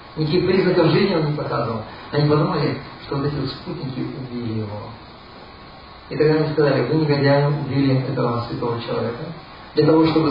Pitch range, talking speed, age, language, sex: 120-155 Hz, 155 wpm, 40-59, Russian, male